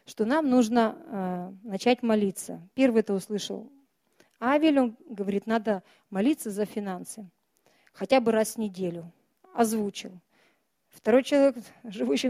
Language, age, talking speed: Russian, 40-59, 120 wpm